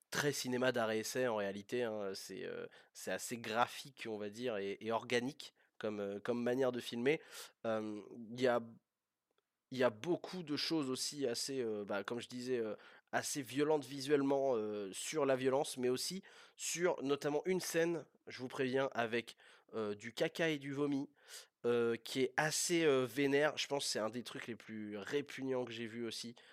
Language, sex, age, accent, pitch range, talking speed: French, male, 20-39, French, 115-140 Hz, 190 wpm